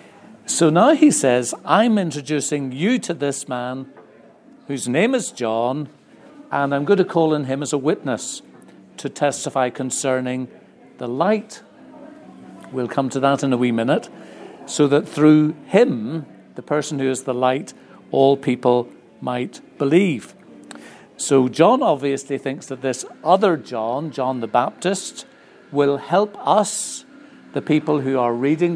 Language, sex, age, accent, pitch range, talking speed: English, male, 60-79, British, 130-165 Hz, 145 wpm